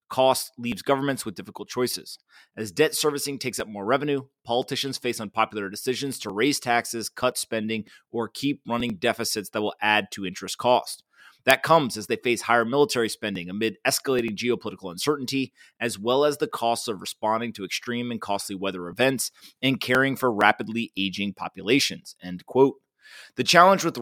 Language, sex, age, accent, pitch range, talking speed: English, male, 30-49, American, 110-140 Hz, 170 wpm